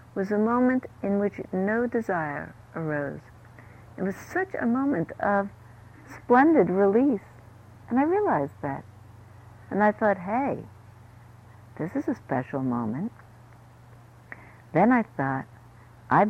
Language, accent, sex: English, American, female